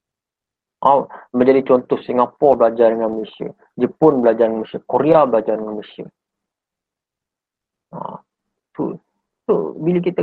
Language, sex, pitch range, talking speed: Malay, male, 120-165 Hz, 125 wpm